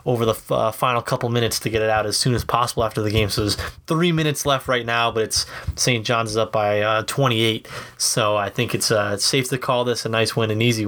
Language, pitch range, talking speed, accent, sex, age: English, 110-130 Hz, 265 wpm, American, male, 20-39